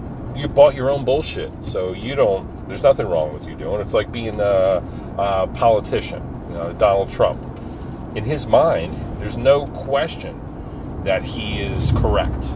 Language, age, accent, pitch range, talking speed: English, 40-59, American, 80-105 Hz, 165 wpm